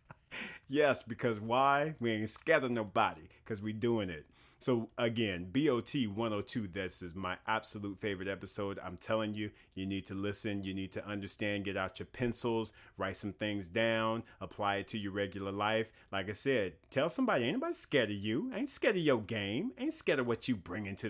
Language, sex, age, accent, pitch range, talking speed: English, male, 30-49, American, 100-125 Hz, 200 wpm